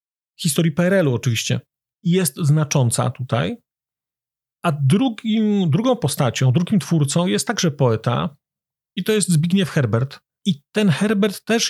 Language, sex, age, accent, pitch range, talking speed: Polish, male, 40-59, native, 140-185 Hz, 125 wpm